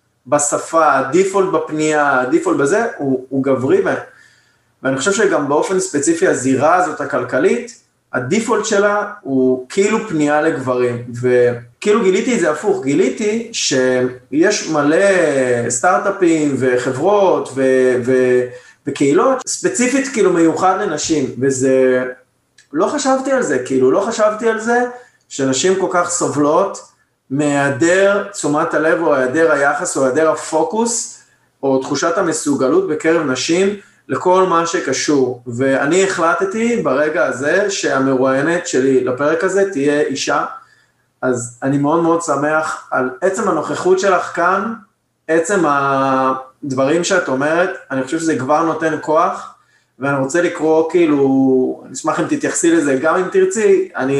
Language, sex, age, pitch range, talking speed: Hebrew, male, 20-39, 135-190 Hz, 125 wpm